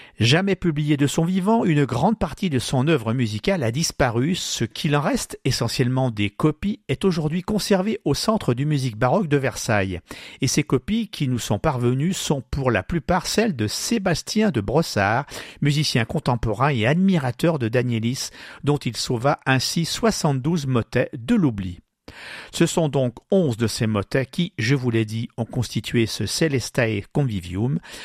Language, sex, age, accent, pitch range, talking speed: French, male, 50-69, French, 120-170 Hz, 165 wpm